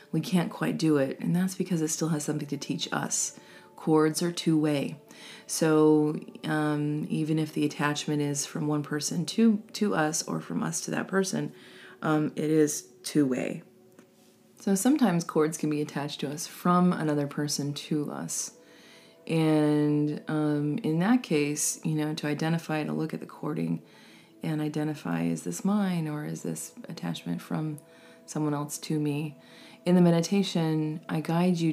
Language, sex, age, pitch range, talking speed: English, female, 30-49, 145-165 Hz, 165 wpm